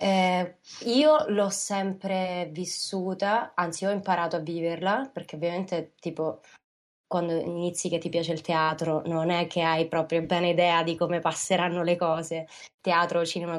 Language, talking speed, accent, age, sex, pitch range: Italian, 150 wpm, native, 20-39, female, 165-185 Hz